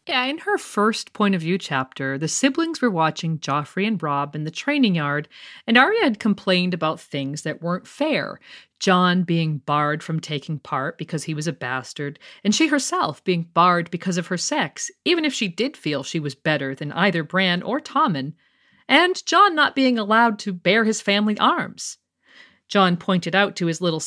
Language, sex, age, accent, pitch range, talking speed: English, female, 50-69, American, 155-230 Hz, 190 wpm